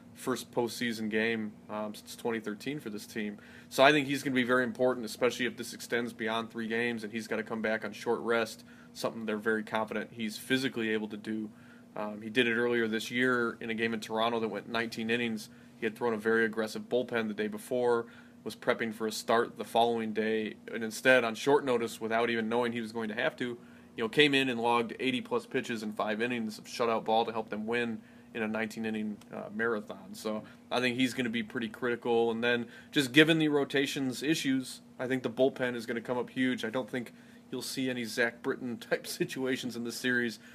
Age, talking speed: 20-39, 225 wpm